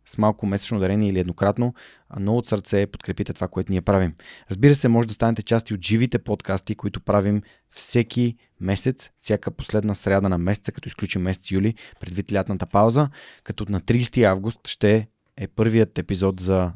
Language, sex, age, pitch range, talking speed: Bulgarian, male, 20-39, 95-115 Hz, 170 wpm